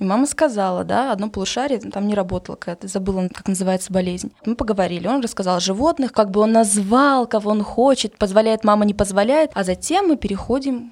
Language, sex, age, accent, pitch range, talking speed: Russian, female, 20-39, native, 195-245 Hz, 185 wpm